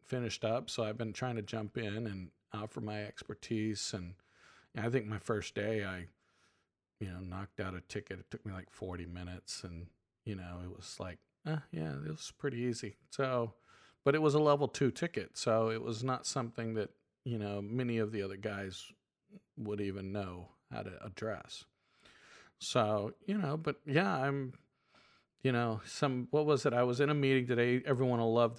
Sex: male